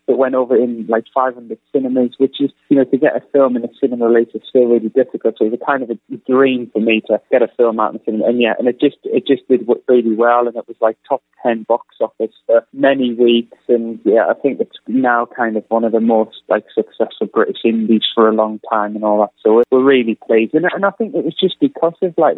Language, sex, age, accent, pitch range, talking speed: English, male, 30-49, British, 110-135 Hz, 265 wpm